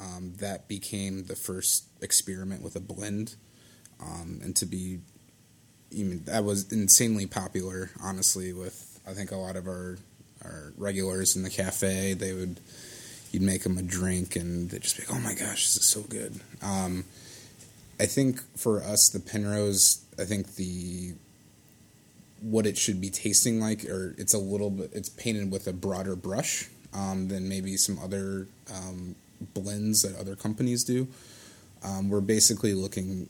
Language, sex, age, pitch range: English, male, 20-39, 95-105 Hz